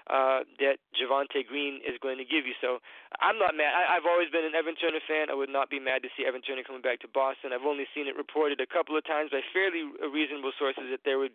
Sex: male